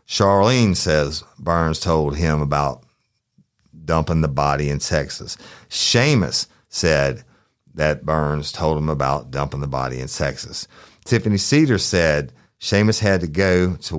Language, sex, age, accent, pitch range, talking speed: English, male, 50-69, American, 75-100 Hz, 135 wpm